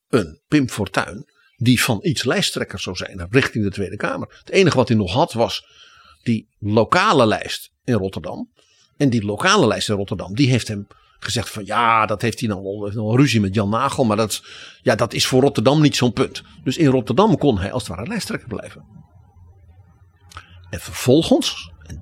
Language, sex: Dutch, male